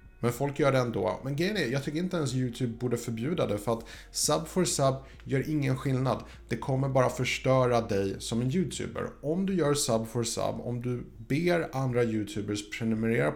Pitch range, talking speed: 110-140 Hz, 190 wpm